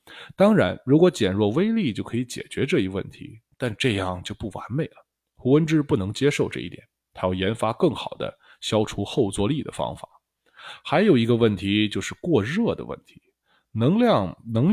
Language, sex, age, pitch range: Chinese, male, 20-39, 100-140 Hz